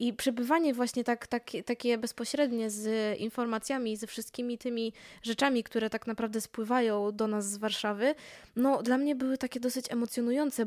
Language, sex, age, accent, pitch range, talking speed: Polish, female, 20-39, native, 225-270 Hz, 145 wpm